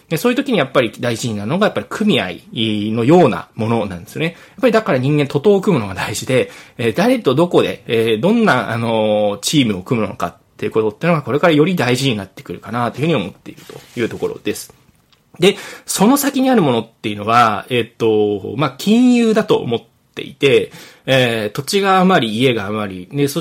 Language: Japanese